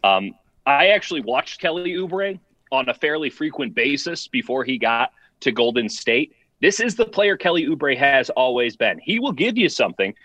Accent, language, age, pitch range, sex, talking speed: American, English, 30-49, 130-205 Hz, male, 180 wpm